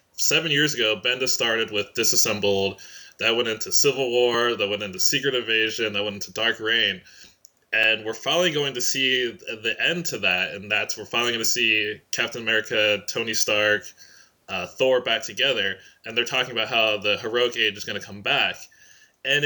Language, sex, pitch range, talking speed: English, male, 110-140 Hz, 190 wpm